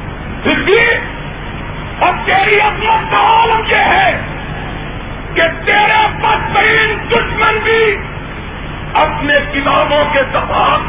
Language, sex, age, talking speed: Urdu, male, 50-69, 85 wpm